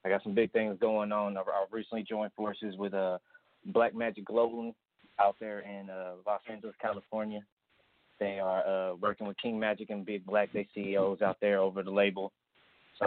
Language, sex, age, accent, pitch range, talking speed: English, male, 20-39, American, 100-105 Hz, 190 wpm